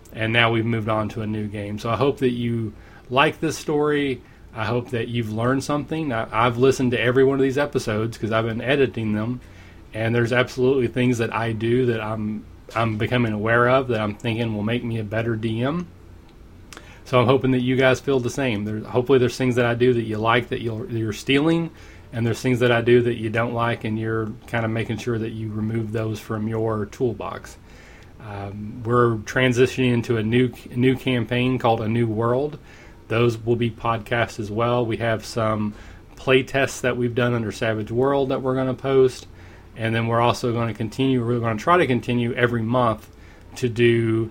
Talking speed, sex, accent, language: 215 wpm, male, American, English